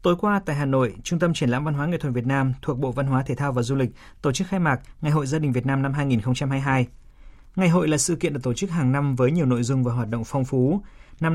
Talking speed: 295 wpm